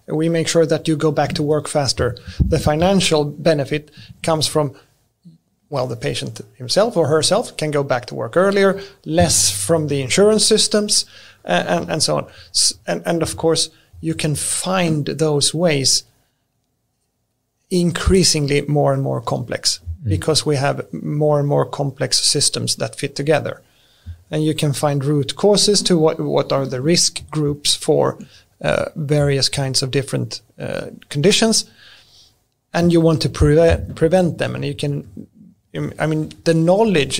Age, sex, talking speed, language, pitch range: 30-49, male, 155 wpm, English, 135-165 Hz